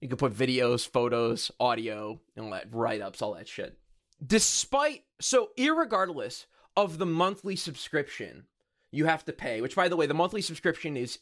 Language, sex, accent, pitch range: English, male, American, 135-210 Hz